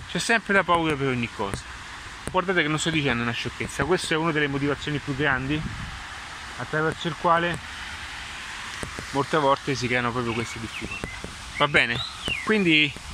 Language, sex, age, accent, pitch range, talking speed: Italian, male, 30-49, native, 135-175 Hz, 155 wpm